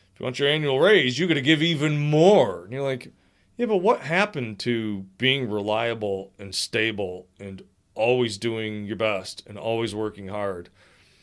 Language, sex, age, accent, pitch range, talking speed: English, male, 30-49, American, 100-150 Hz, 165 wpm